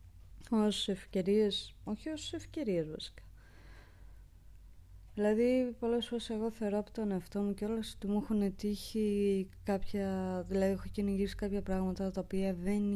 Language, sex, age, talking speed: Greek, female, 20-39, 140 wpm